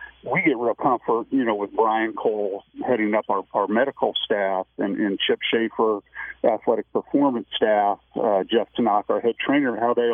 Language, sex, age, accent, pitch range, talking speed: English, male, 50-69, American, 100-115 Hz, 180 wpm